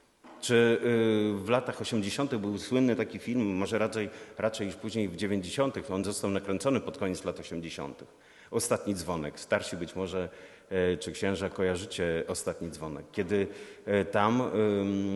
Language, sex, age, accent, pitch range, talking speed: Polish, male, 40-59, native, 100-125 Hz, 135 wpm